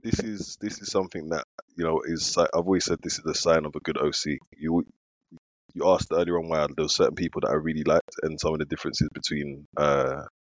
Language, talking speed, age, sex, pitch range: English, 240 wpm, 20-39, male, 75-90 Hz